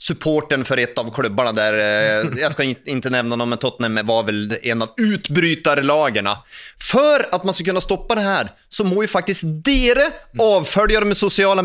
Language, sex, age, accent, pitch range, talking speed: English, male, 30-49, Swedish, 165-230 Hz, 180 wpm